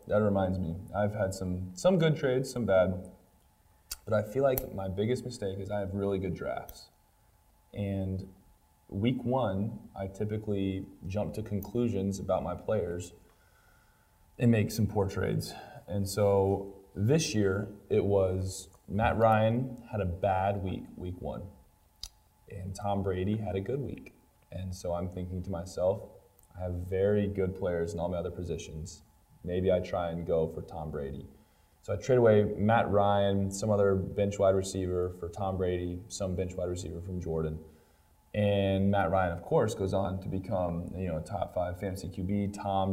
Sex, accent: male, American